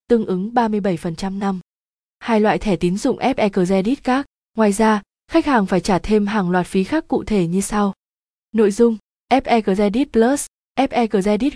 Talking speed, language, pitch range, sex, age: 160 wpm, Vietnamese, 195-235 Hz, female, 20-39